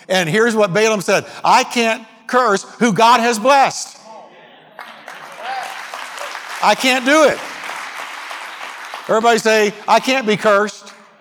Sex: male